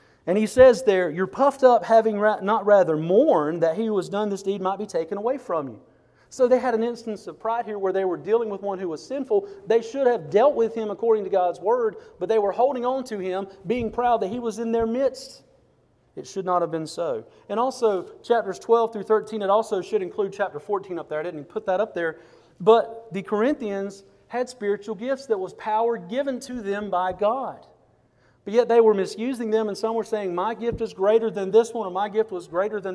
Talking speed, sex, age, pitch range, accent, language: 235 wpm, male, 40-59, 190-235 Hz, American, English